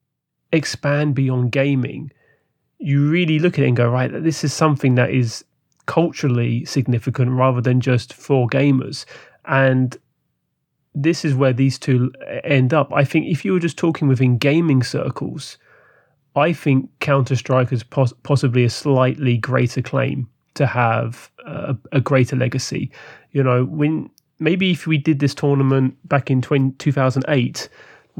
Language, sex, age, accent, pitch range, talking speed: English, male, 30-49, British, 125-145 Hz, 145 wpm